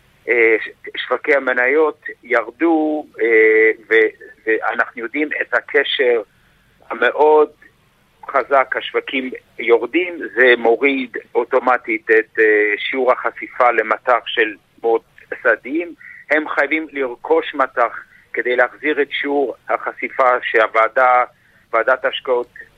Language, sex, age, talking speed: Hebrew, male, 50-69, 85 wpm